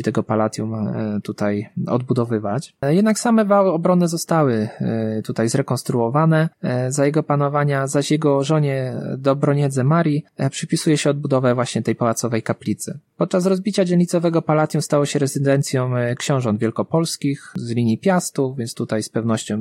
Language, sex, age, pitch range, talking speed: Polish, male, 20-39, 115-160 Hz, 130 wpm